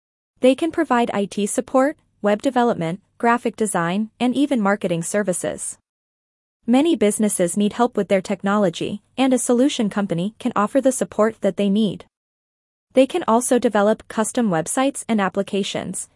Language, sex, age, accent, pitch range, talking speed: English, female, 20-39, American, 200-255 Hz, 145 wpm